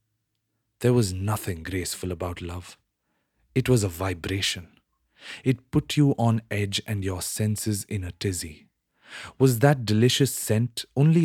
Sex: male